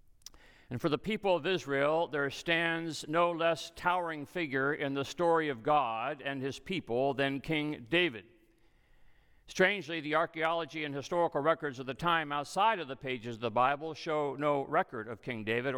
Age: 60-79